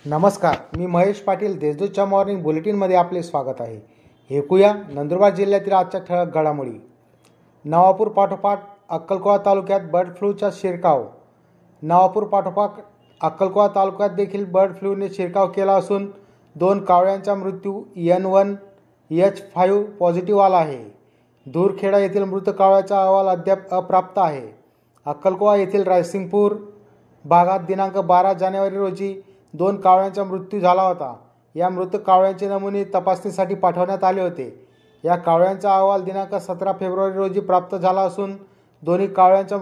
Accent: native